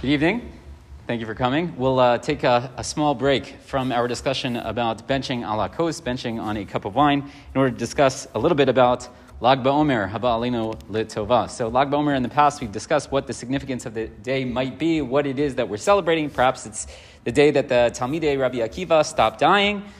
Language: English